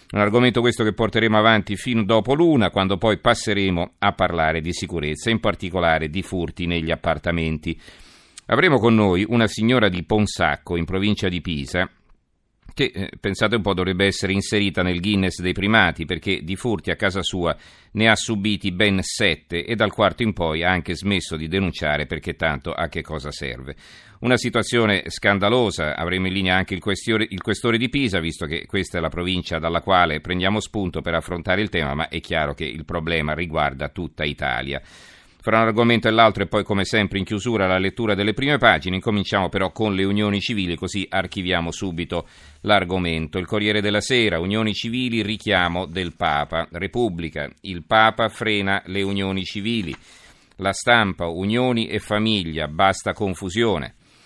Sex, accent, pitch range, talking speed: male, native, 85-110 Hz, 170 wpm